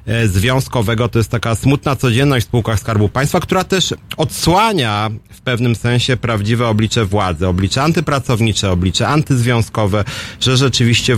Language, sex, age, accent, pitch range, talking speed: Polish, male, 30-49, native, 100-125 Hz, 135 wpm